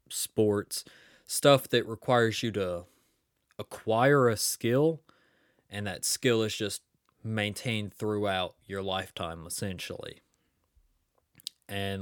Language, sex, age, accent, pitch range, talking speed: English, male, 20-39, American, 95-110 Hz, 100 wpm